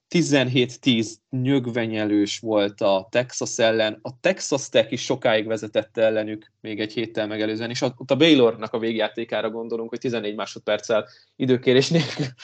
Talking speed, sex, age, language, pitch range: 130 wpm, male, 20-39, Hungarian, 115-140 Hz